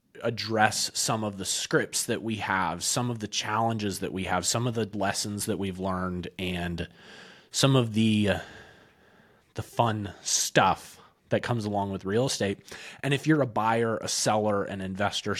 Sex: male